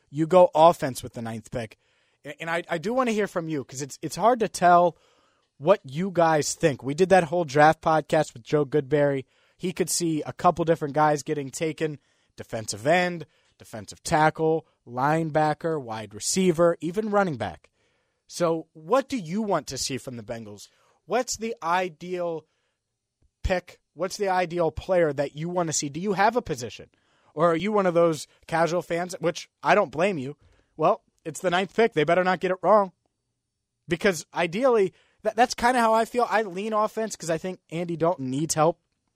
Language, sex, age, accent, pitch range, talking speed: English, male, 30-49, American, 135-180 Hz, 190 wpm